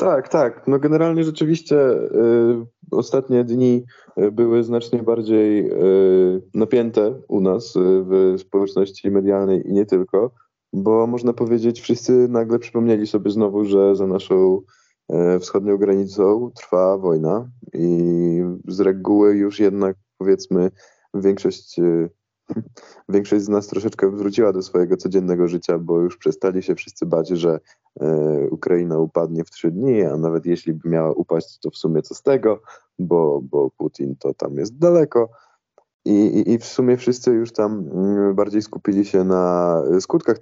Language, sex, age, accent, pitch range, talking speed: Polish, male, 20-39, native, 95-115 Hz, 140 wpm